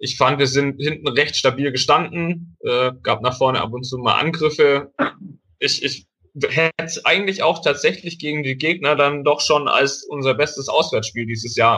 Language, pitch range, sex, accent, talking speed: German, 120-145 Hz, male, German, 180 wpm